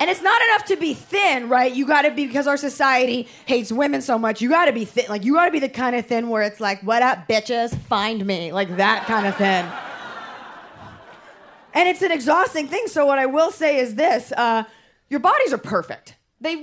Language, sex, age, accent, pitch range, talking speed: English, female, 20-39, American, 220-295 Hz, 220 wpm